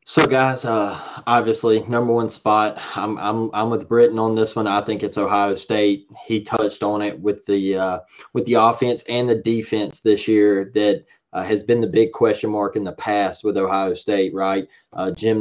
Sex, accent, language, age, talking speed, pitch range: male, American, English, 20-39, 205 wpm, 105-130 Hz